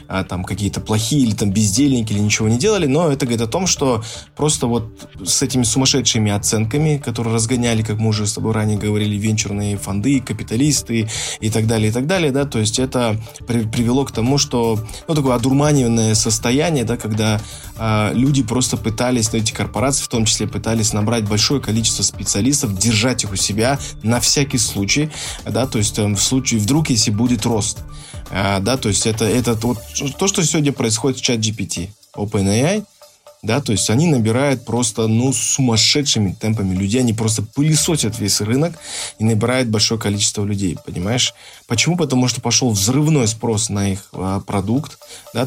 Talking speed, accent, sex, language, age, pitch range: 175 wpm, native, male, Russian, 20-39, 105-130 Hz